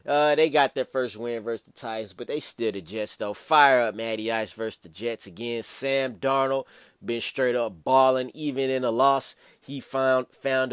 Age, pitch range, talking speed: 20-39, 120-140 Hz, 200 wpm